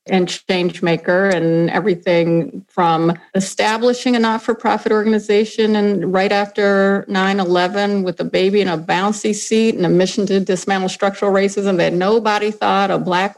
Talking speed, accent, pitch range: 160 wpm, American, 185-225 Hz